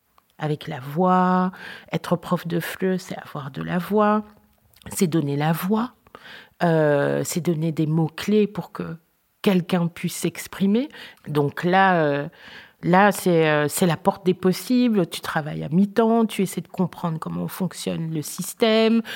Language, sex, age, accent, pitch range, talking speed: French, female, 40-59, French, 165-210 Hz, 150 wpm